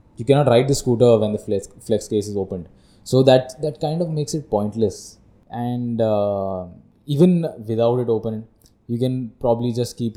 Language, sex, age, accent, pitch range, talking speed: English, male, 20-39, Indian, 100-125 Hz, 175 wpm